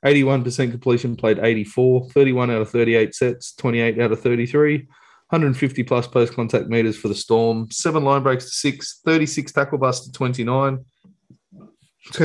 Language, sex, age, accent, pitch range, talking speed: English, male, 20-39, Australian, 115-135 Hz, 150 wpm